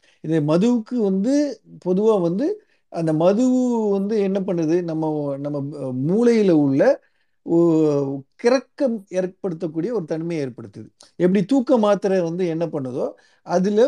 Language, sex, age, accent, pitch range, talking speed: Tamil, male, 50-69, native, 160-220 Hz, 110 wpm